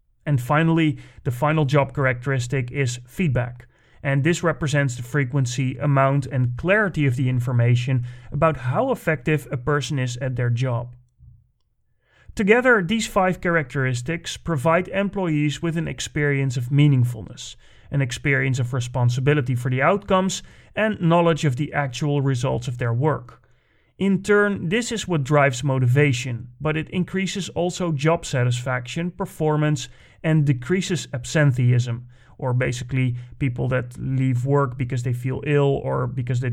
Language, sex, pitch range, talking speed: English, male, 125-165 Hz, 140 wpm